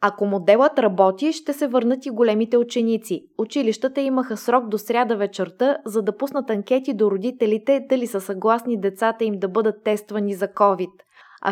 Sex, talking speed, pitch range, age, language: female, 165 wpm, 200-250 Hz, 20-39, Bulgarian